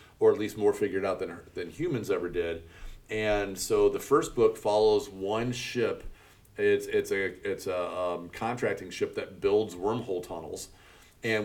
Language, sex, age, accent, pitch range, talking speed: English, male, 40-59, American, 100-130 Hz, 170 wpm